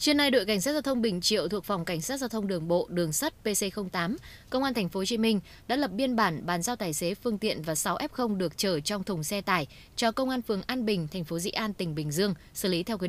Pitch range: 180-230 Hz